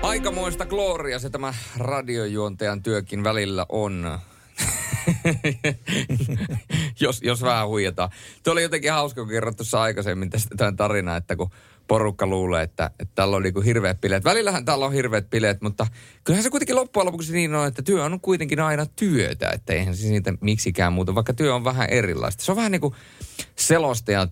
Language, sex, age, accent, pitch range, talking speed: Finnish, male, 30-49, native, 85-115 Hz, 170 wpm